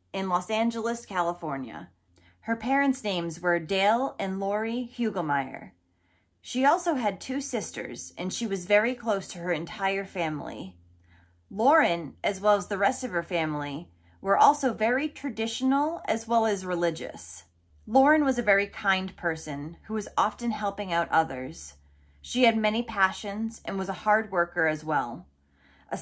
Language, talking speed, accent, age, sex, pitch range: English, 155 wpm, American, 30-49, female, 175-245 Hz